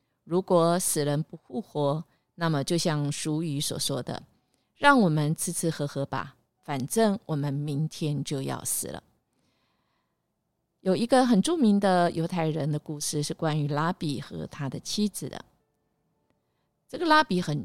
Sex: female